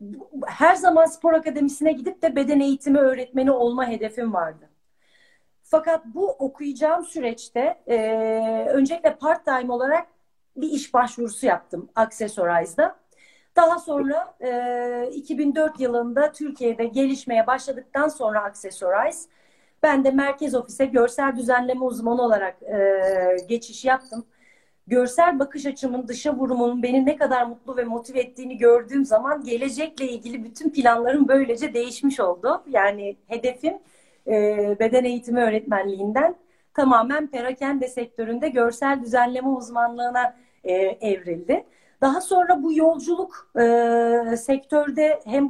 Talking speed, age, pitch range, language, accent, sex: 115 wpm, 40-59, 235-300 Hz, Turkish, native, female